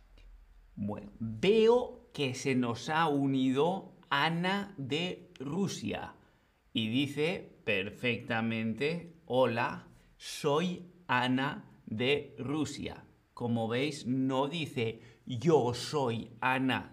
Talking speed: 90 wpm